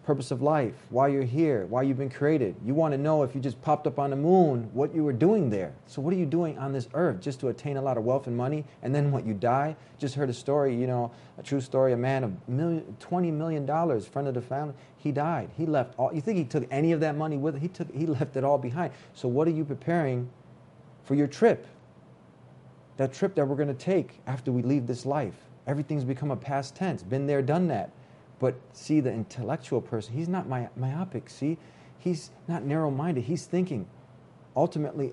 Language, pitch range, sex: English, 130-155 Hz, male